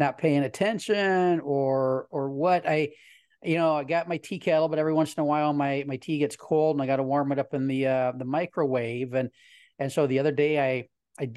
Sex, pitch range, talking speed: male, 135-160 Hz, 240 wpm